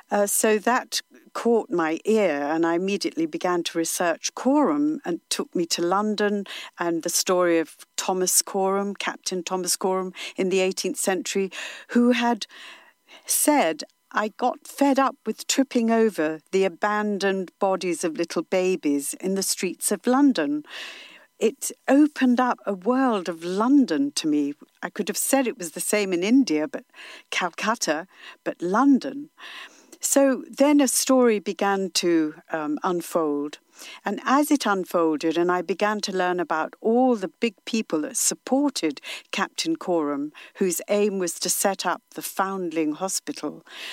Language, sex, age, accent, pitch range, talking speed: English, female, 60-79, British, 175-255 Hz, 150 wpm